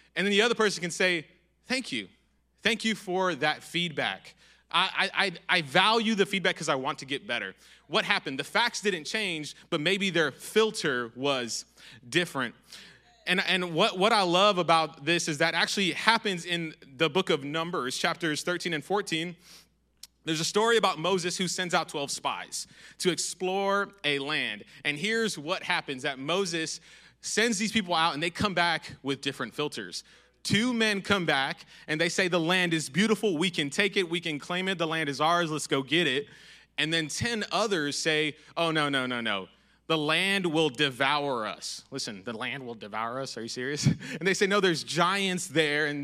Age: 30-49